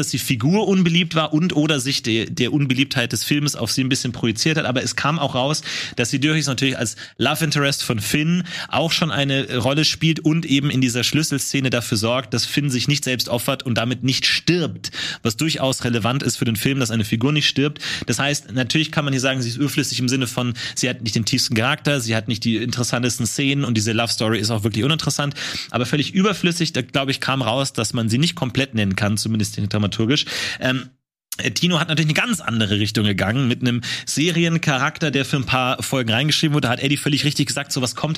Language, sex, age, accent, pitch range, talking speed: German, male, 30-49, German, 120-145 Hz, 230 wpm